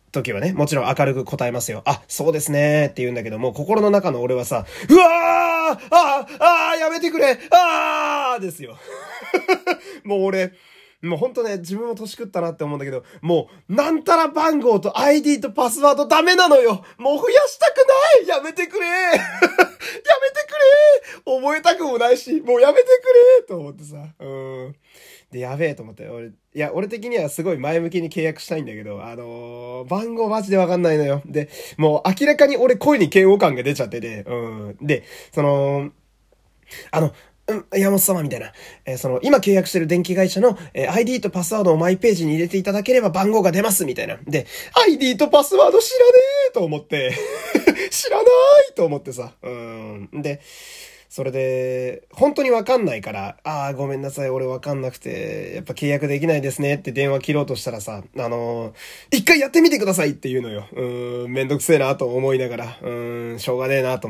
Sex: male